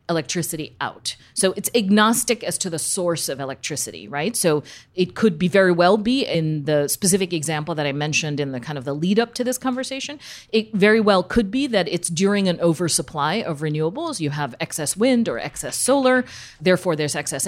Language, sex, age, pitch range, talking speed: English, female, 40-59, 155-210 Hz, 200 wpm